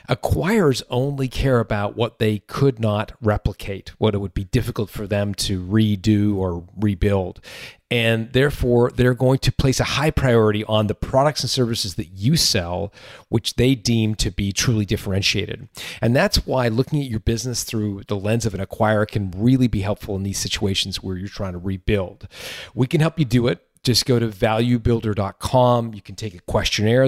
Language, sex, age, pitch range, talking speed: English, male, 40-59, 100-125 Hz, 185 wpm